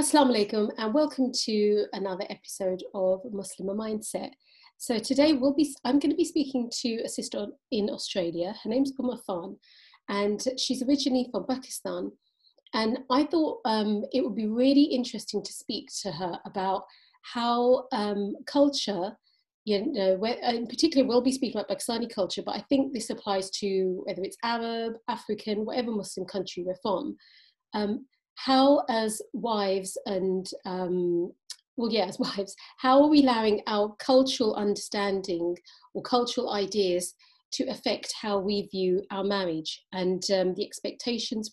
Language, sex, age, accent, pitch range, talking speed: English, female, 30-49, British, 195-255 Hz, 150 wpm